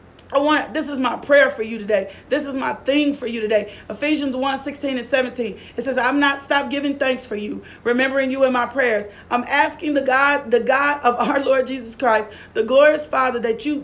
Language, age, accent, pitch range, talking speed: English, 40-59, American, 255-315 Hz, 215 wpm